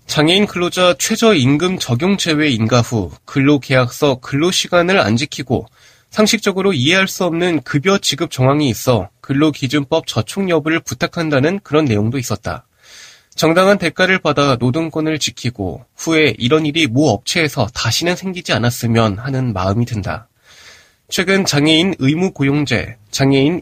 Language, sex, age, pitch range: Korean, male, 20-39, 125-175 Hz